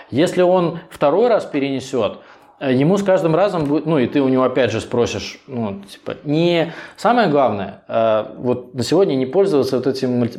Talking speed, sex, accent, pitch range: 180 wpm, male, native, 120-155 Hz